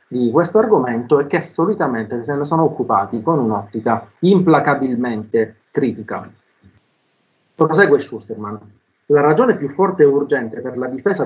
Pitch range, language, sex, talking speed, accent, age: 120-160 Hz, Italian, male, 135 wpm, native, 30-49